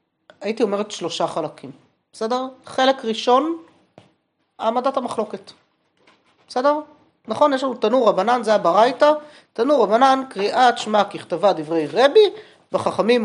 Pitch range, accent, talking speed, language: 180-245 Hz, native, 115 wpm, Hebrew